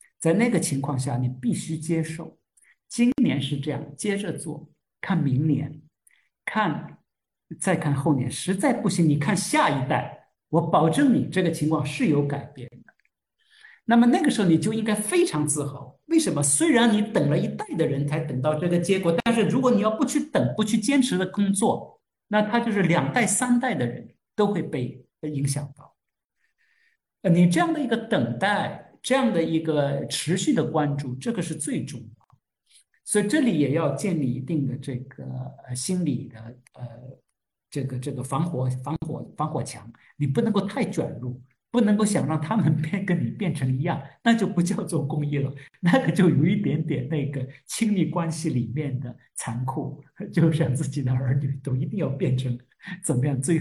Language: Chinese